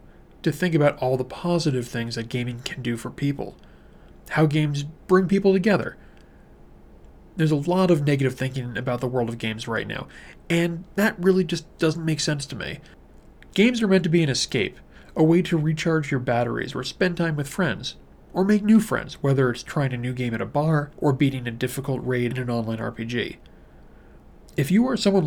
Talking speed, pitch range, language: 200 wpm, 125-165 Hz, English